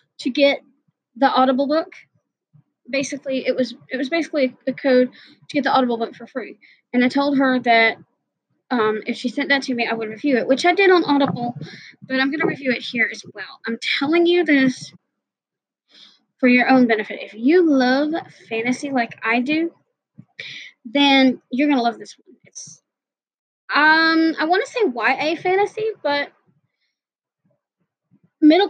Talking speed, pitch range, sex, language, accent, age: 170 wpm, 240-295 Hz, female, English, American, 20-39